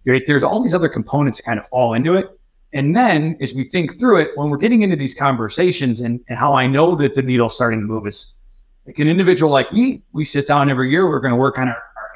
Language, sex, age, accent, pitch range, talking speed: English, male, 30-49, American, 125-165 Hz, 265 wpm